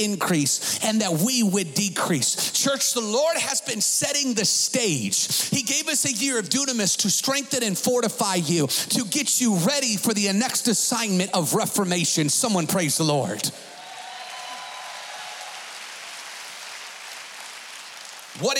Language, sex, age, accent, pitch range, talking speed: English, male, 40-59, American, 200-260 Hz, 130 wpm